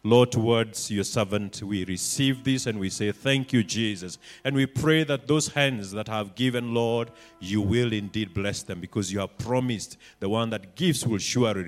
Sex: male